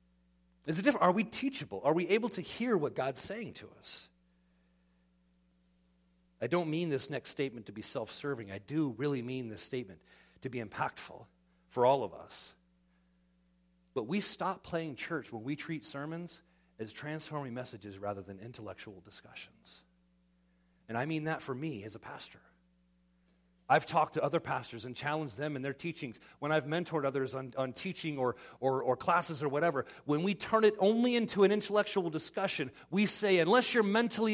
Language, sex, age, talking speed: English, male, 40-59, 180 wpm